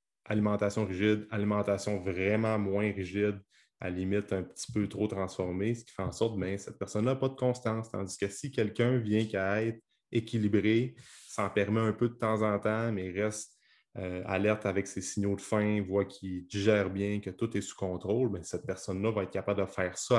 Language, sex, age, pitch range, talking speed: French, male, 30-49, 95-110 Hz, 200 wpm